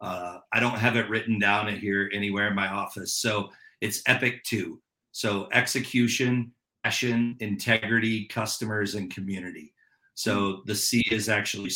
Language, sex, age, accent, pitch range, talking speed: English, male, 40-59, American, 105-130 Hz, 150 wpm